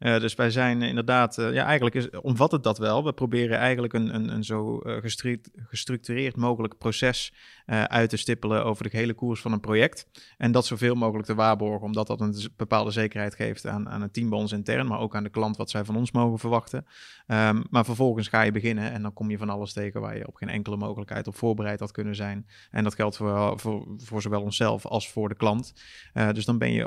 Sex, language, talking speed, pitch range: male, Dutch, 240 wpm, 105-115 Hz